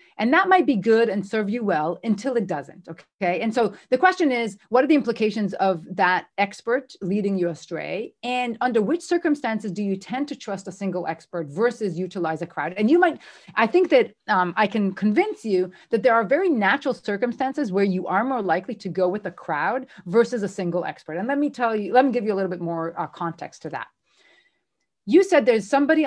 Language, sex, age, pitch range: English, female, 40-59, 185-255 Hz